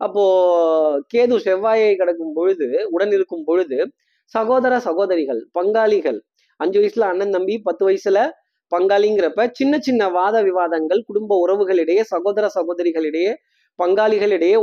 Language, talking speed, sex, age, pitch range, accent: Tamil, 110 wpm, male, 20-39, 165-215 Hz, native